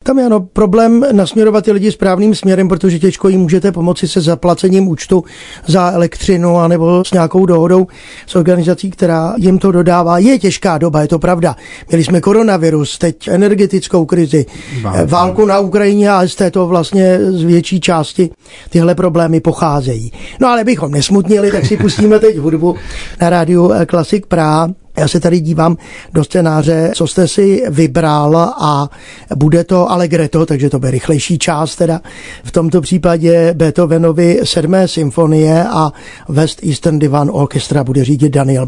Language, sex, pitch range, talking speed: Czech, male, 160-195 Hz, 155 wpm